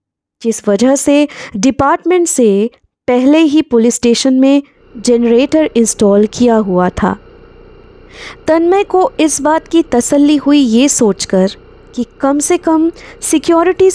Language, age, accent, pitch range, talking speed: Hindi, 20-39, native, 220-305 Hz, 125 wpm